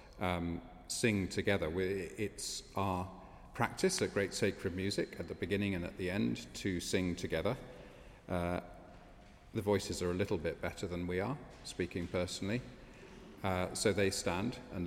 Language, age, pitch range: English, 40-59, 85-100 Hz